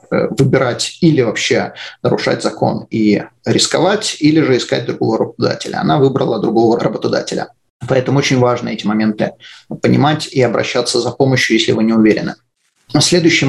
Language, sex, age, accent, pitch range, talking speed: Russian, male, 30-49, native, 120-150 Hz, 140 wpm